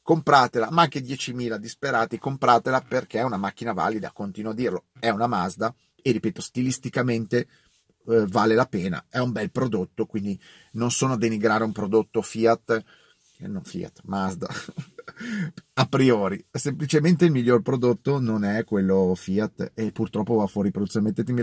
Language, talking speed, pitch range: Italian, 155 wpm, 110-150 Hz